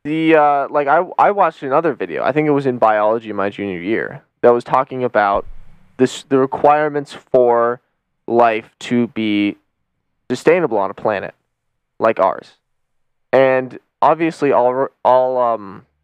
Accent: American